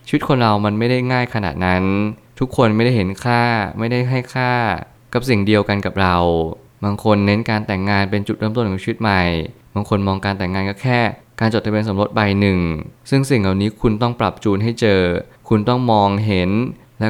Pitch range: 100-120 Hz